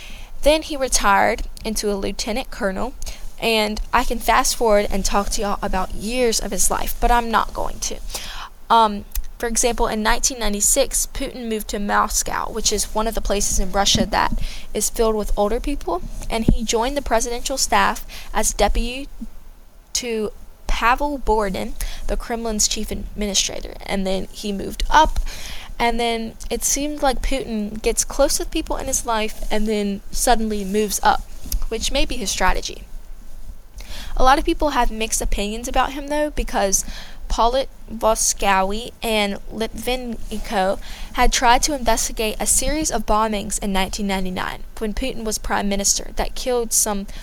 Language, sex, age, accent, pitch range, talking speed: English, female, 20-39, American, 205-245 Hz, 160 wpm